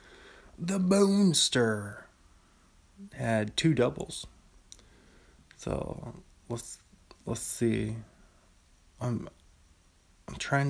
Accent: American